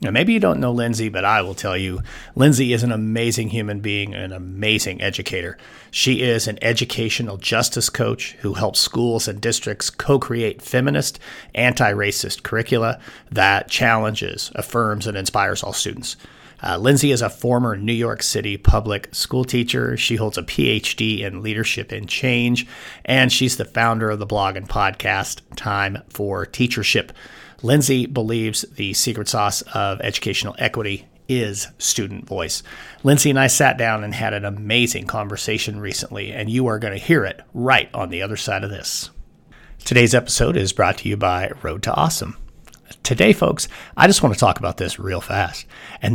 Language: English